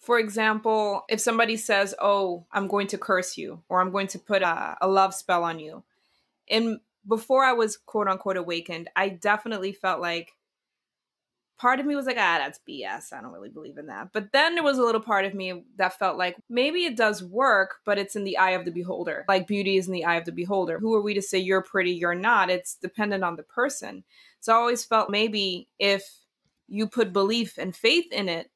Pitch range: 185-220 Hz